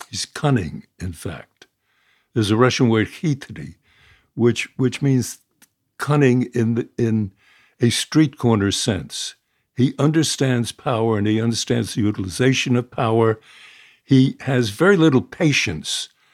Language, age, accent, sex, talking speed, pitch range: English, 60-79, American, male, 125 wpm, 105-135 Hz